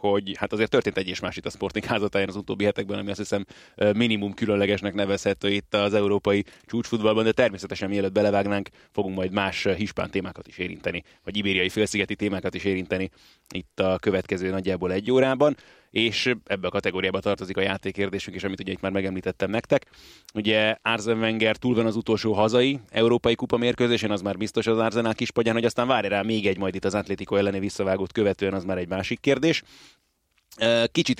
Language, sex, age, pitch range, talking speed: Hungarian, male, 30-49, 95-110 Hz, 185 wpm